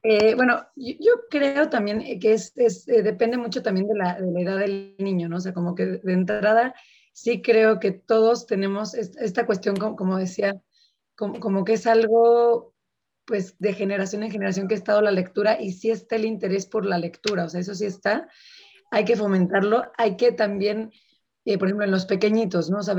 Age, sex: 30-49, female